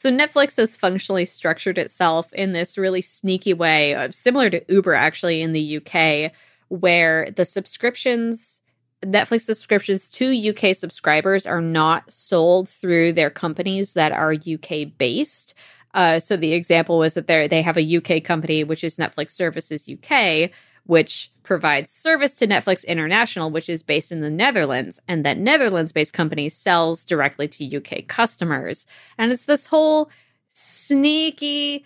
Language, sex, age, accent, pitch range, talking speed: English, female, 20-39, American, 160-195 Hz, 145 wpm